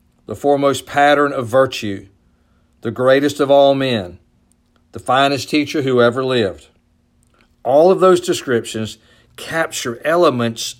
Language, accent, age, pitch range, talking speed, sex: English, American, 50-69, 105-130 Hz, 120 wpm, male